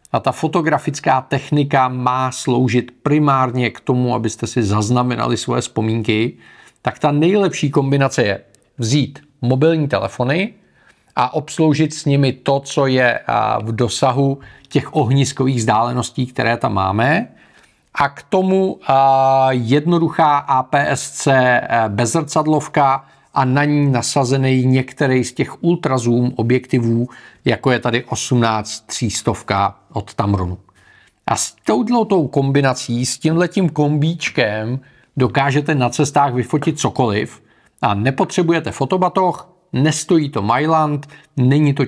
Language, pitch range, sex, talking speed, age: Czech, 120-145 Hz, male, 110 wpm, 40-59